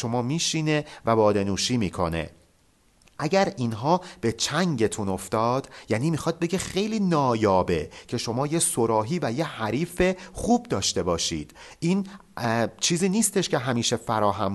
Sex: male